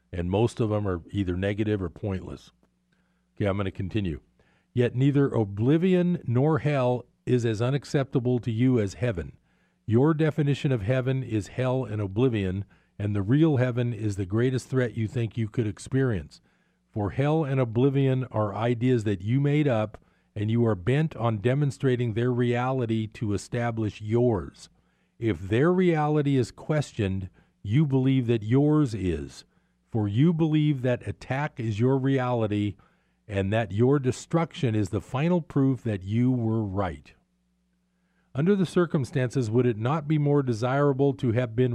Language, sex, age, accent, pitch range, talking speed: English, male, 50-69, American, 105-140 Hz, 160 wpm